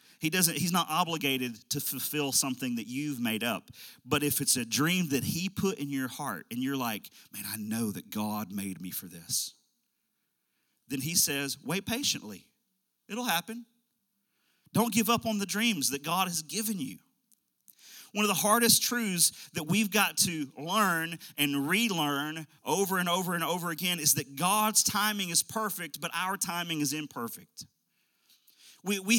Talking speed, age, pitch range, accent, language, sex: 170 wpm, 40-59, 150-240 Hz, American, English, male